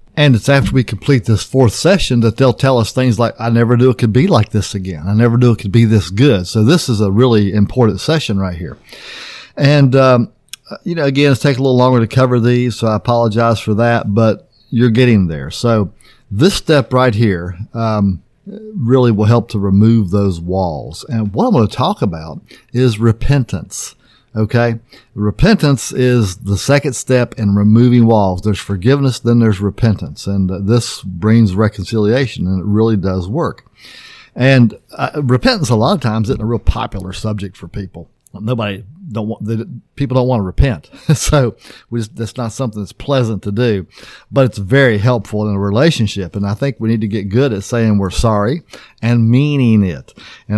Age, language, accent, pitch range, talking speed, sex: 50-69, English, American, 105-130 Hz, 190 wpm, male